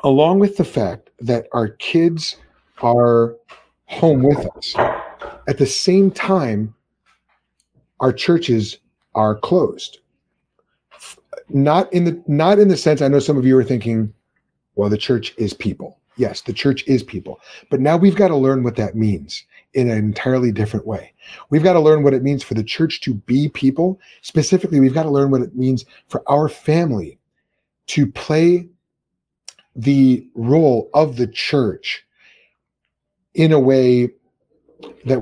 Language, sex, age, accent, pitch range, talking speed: English, male, 30-49, American, 115-155 Hz, 155 wpm